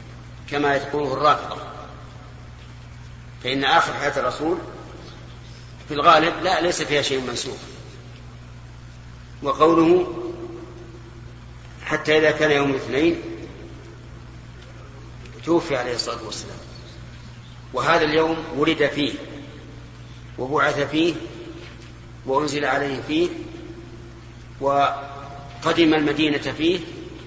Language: Arabic